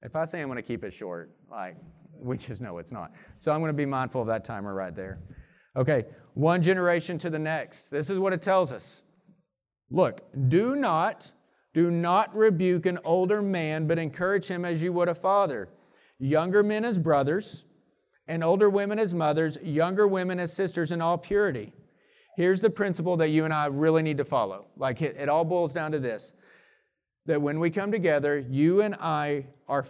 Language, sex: English, male